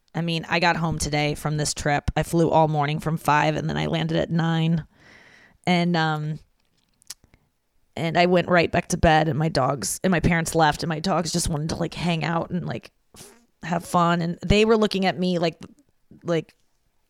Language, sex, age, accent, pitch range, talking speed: English, female, 20-39, American, 160-190 Hz, 205 wpm